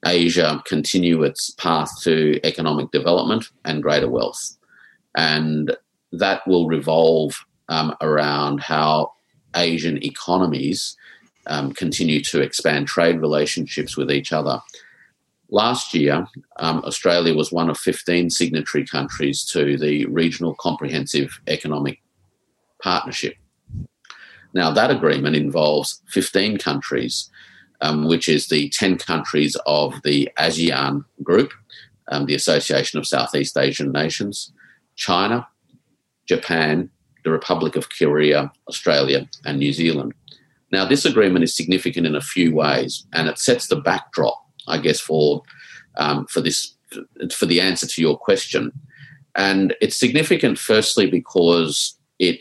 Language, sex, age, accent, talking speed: English, male, 40-59, Australian, 125 wpm